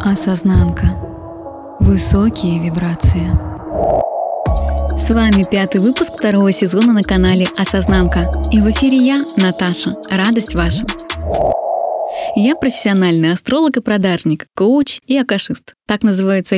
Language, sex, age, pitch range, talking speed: Russian, female, 20-39, 180-255 Hz, 105 wpm